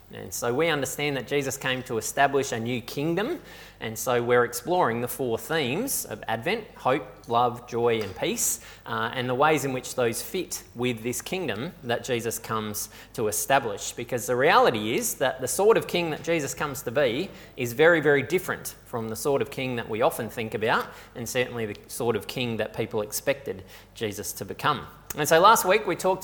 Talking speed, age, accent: 200 wpm, 20-39, Australian